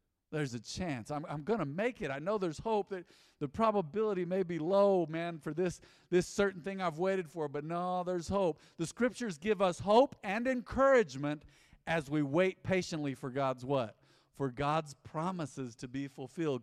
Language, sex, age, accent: English, male, 50-69, American